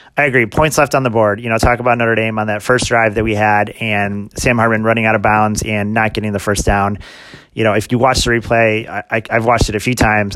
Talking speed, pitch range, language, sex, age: 280 wpm, 105-120 Hz, English, male, 30-49